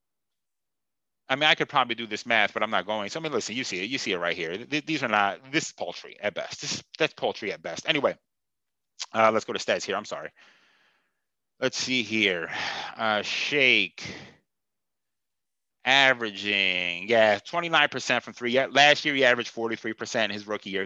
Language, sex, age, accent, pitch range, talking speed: English, male, 30-49, American, 110-150 Hz, 185 wpm